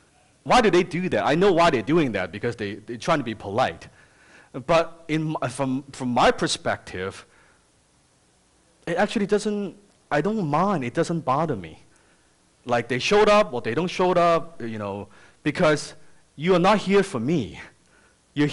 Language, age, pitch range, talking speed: English, 30-49, 115-175 Hz, 170 wpm